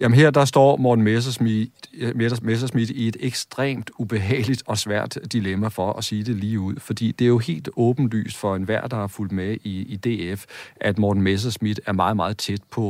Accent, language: native, Danish